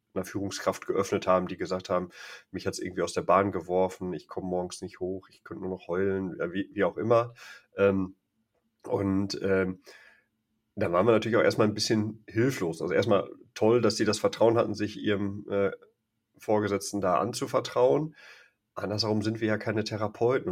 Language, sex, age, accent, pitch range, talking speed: German, male, 30-49, German, 95-110 Hz, 180 wpm